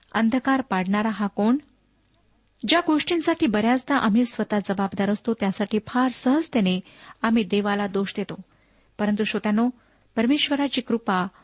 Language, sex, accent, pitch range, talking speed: Marathi, female, native, 205-245 Hz, 115 wpm